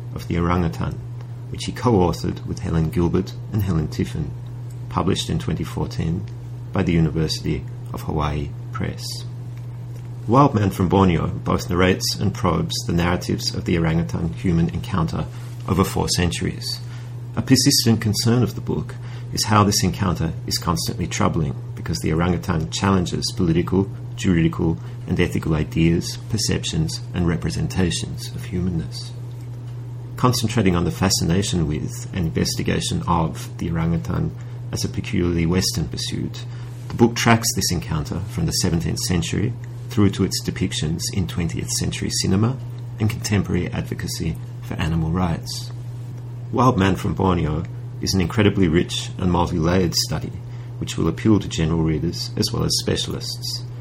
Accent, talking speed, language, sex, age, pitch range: Australian, 140 wpm, English, male, 40-59, 95-120 Hz